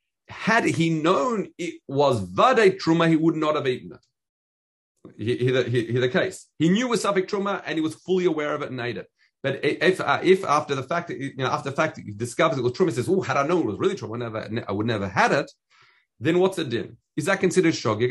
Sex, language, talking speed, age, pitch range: male, English, 250 wpm, 40-59, 120-175 Hz